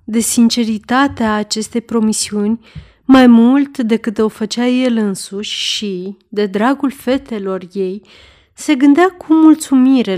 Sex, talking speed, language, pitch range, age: female, 120 wpm, Romanian, 200-250 Hz, 30-49